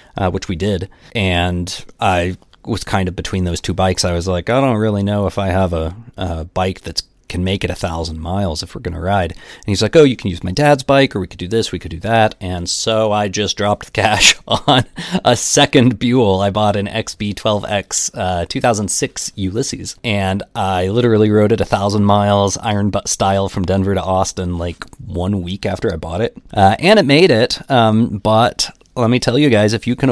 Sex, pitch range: male, 90-110 Hz